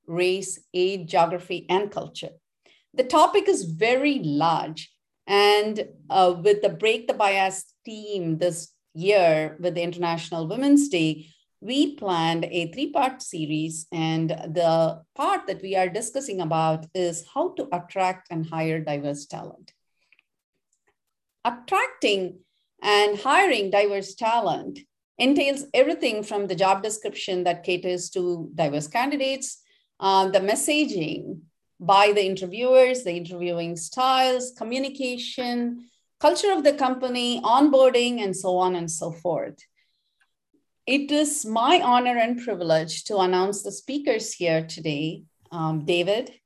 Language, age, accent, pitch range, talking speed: English, 50-69, Indian, 175-245 Hz, 125 wpm